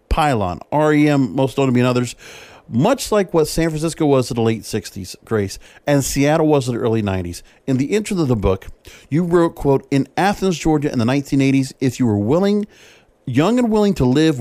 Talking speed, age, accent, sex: 210 wpm, 40-59, American, male